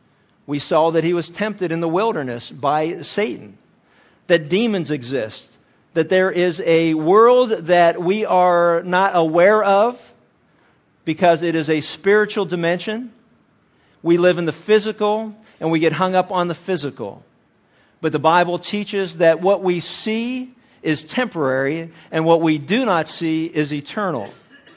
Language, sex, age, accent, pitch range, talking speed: English, male, 50-69, American, 165-205 Hz, 150 wpm